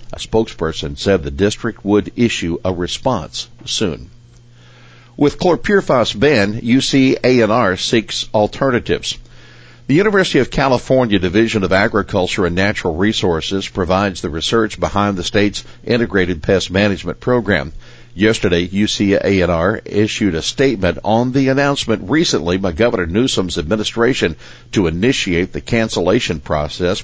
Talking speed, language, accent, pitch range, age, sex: 140 wpm, English, American, 90-120 Hz, 60-79, male